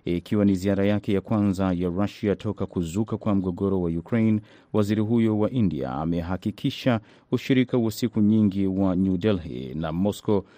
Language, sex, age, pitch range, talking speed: Swahili, male, 30-49, 95-110 Hz, 155 wpm